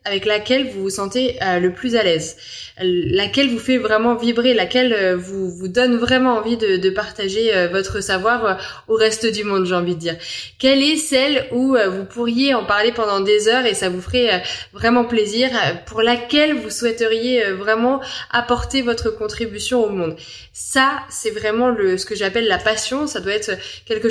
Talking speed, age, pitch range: 180 wpm, 20-39, 195-240 Hz